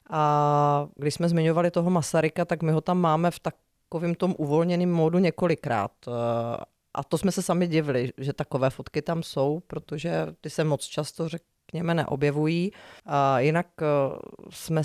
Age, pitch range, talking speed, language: 30-49, 145-165 Hz, 155 wpm, Czech